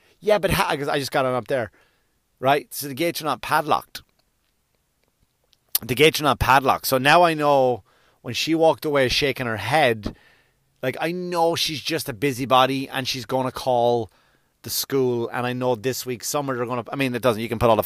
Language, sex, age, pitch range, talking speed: English, male, 30-49, 120-150 Hz, 210 wpm